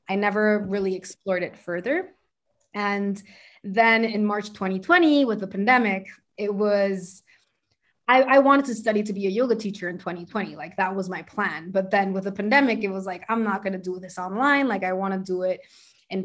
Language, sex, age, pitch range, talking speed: English, female, 20-39, 190-215 Hz, 205 wpm